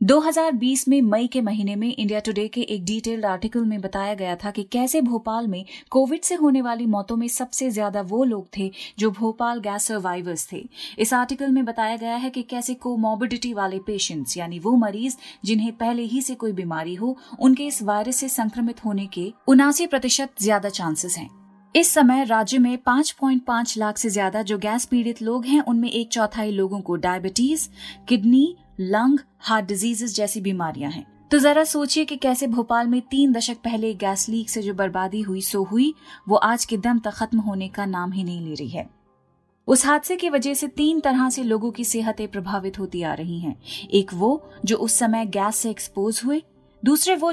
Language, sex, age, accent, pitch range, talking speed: Hindi, female, 30-49, native, 205-255 Hz, 195 wpm